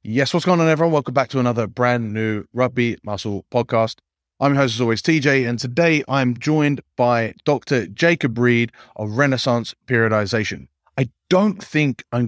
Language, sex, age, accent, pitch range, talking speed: English, male, 30-49, British, 110-145 Hz, 170 wpm